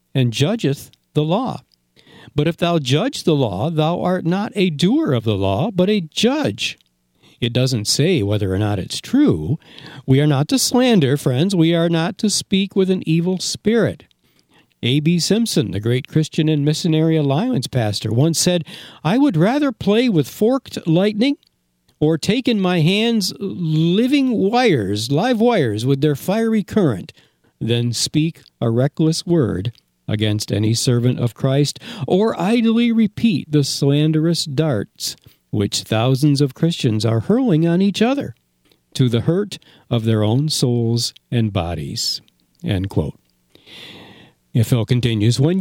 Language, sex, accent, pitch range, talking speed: English, male, American, 120-180 Hz, 145 wpm